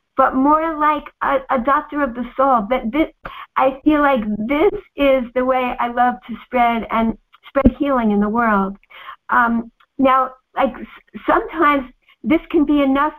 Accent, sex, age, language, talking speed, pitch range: American, female, 60-79, English, 165 wpm, 235-275 Hz